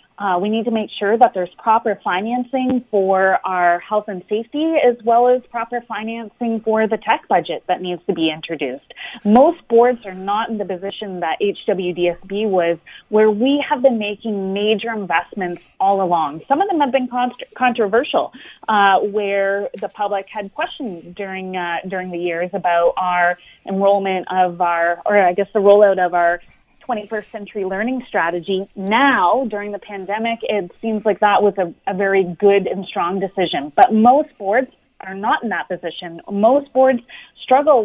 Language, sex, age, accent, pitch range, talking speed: English, female, 30-49, American, 190-225 Hz, 170 wpm